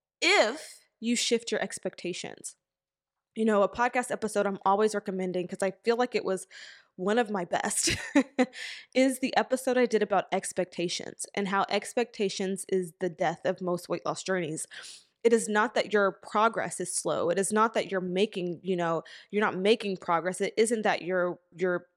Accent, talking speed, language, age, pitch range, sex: American, 180 wpm, English, 20-39, 190-240 Hz, female